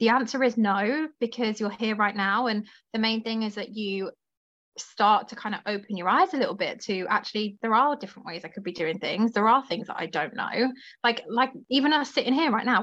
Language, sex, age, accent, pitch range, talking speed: English, female, 20-39, British, 210-255 Hz, 245 wpm